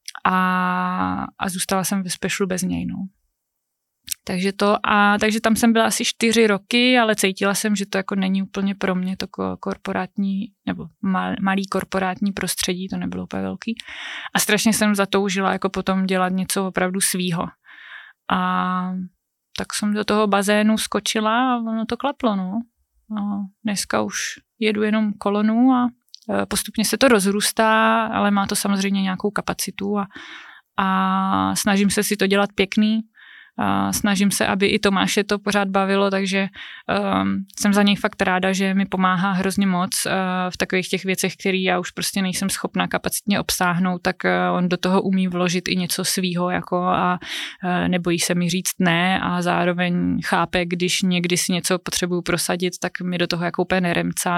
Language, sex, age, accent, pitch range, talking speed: Czech, female, 20-39, native, 180-205 Hz, 170 wpm